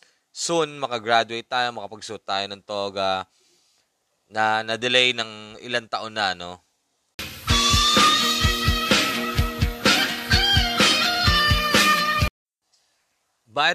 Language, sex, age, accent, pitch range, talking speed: Filipino, male, 20-39, native, 110-140 Hz, 70 wpm